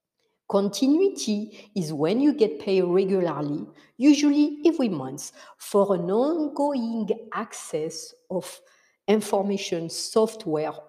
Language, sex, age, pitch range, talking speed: English, female, 60-79, 165-255 Hz, 95 wpm